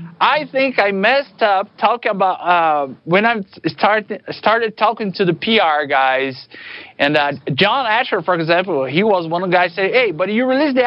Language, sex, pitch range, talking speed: English, male, 145-205 Hz, 195 wpm